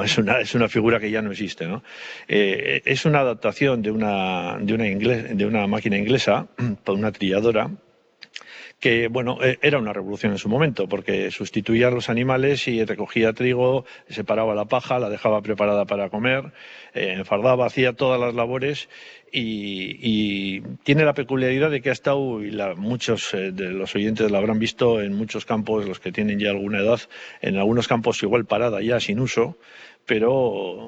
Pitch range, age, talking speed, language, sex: 100-125 Hz, 50-69, 180 wpm, Spanish, male